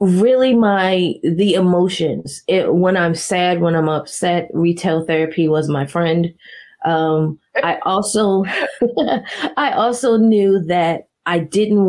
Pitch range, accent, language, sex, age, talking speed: 160-190 Hz, American, English, female, 30-49, 125 wpm